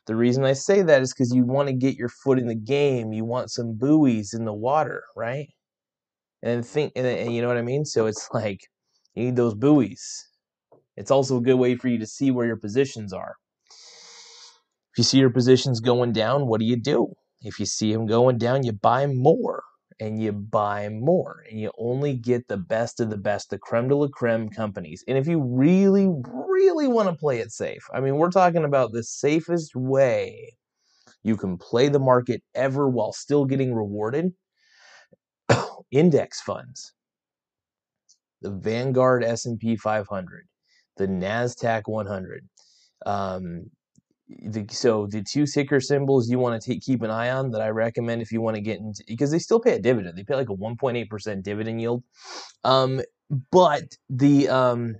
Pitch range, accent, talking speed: 115-140 Hz, American, 185 wpm